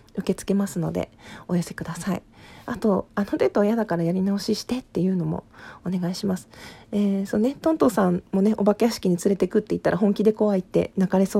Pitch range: 185-235 Hz